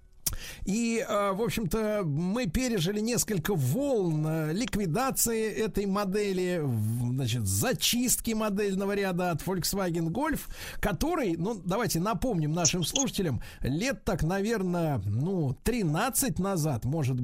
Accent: native